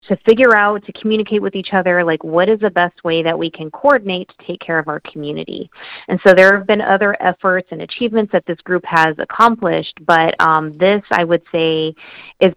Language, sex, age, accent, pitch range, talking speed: English, female, 30-49, American, 160-200 Hz, 215 wpm